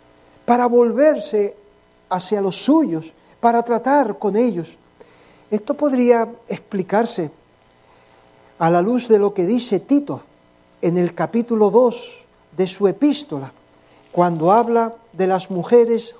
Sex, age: male, 60-79